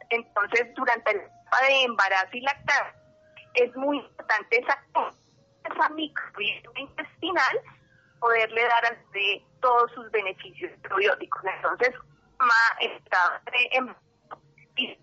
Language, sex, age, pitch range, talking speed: Spanish, female, 30-49, 210-275 Hz, 100 wpm